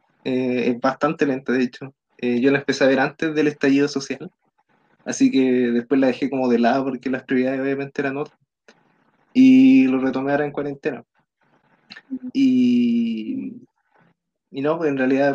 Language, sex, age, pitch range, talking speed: Spanish, male, 20-39, 135-165 Hz, 165 wpm